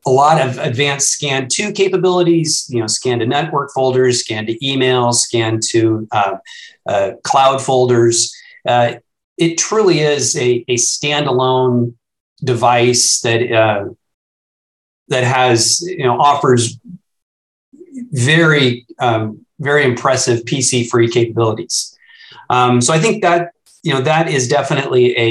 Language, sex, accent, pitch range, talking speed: English, male, American, 115-140 Hz, 130 wpm